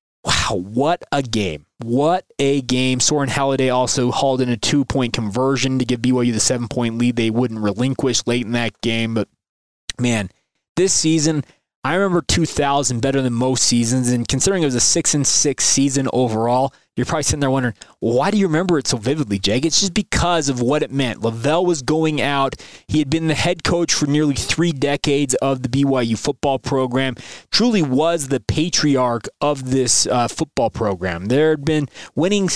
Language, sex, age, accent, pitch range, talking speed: English, male, 20-39, American, 125-155 Hz, 190 wpm